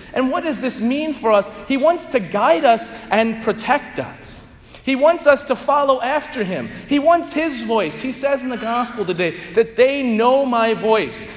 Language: English